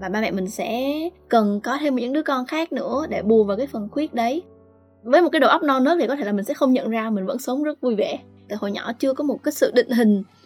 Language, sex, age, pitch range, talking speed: Vietnamese, female, 20-39, 215-275 Hz, 300 wpm